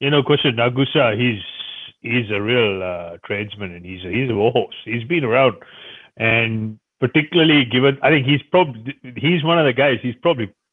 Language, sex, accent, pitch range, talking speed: English, male, Indian, 105-135 Hz, 180 wpm